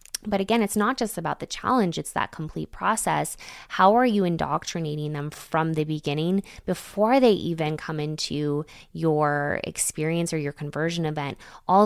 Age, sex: 20-39, female